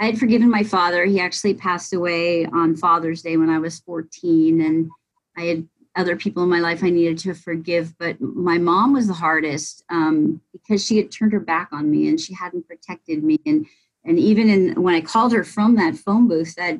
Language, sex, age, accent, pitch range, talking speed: English, female, 40-59, American, 160-195 Hz, 220 wpm